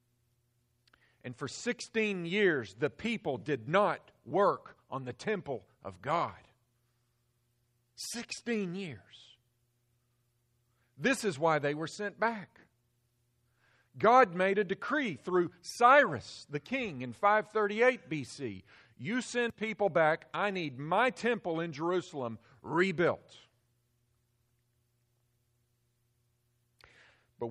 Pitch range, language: 120-180 Hz, English